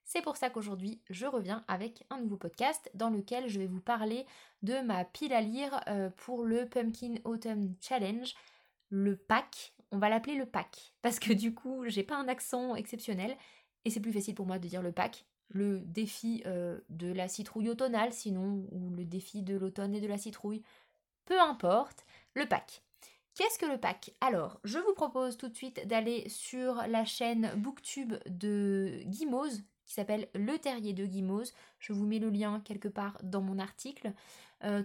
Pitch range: 200-250 Hz